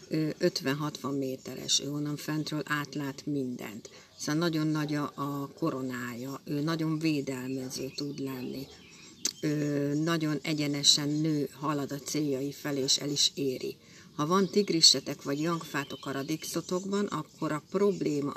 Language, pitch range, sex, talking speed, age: Hungarian, 140-185 Hz, female, 125 wpm, 60-79